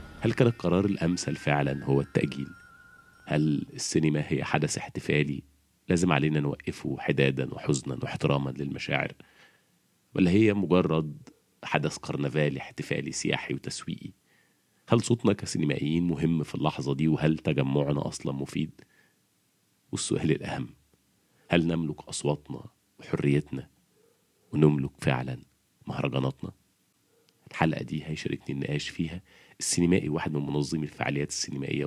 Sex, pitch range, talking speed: male, 70-95 Hz, 110 wpm